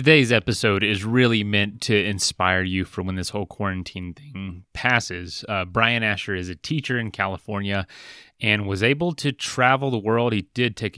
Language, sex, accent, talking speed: English, male, American, 180 wpm